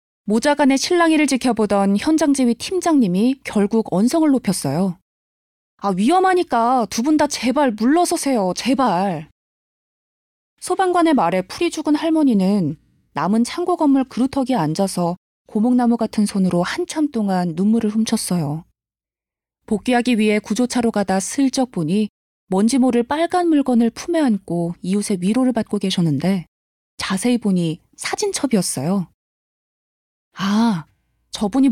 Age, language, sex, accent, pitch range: 20-39, Korean, female, native, 190-270 Hz